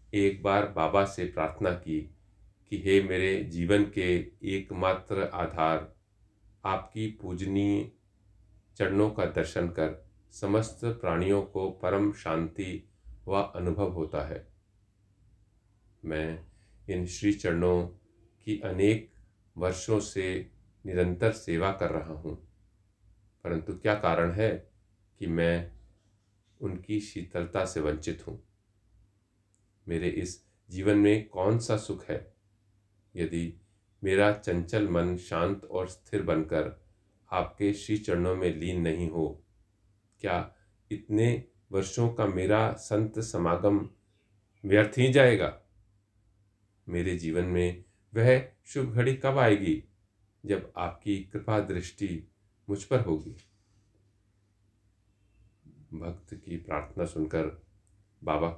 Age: 40-59